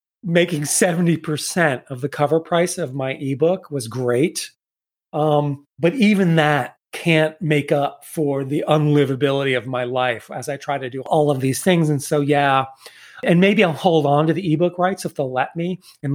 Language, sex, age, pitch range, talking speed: English, male, 30-49, 145-190 Hz, 185 wpm